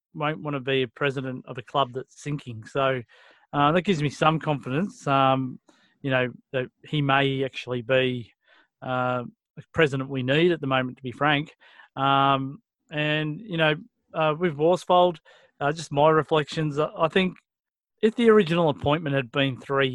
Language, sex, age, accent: English, male, 40-59, Australian